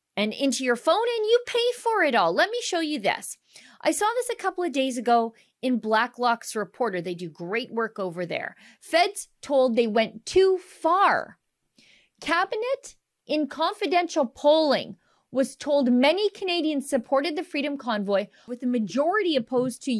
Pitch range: 205-265 Hz